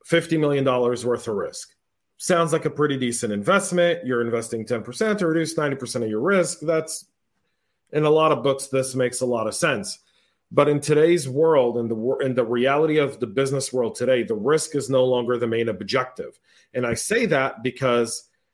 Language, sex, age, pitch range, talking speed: English, male, 40-59, 125-170 Hz, 185 wpm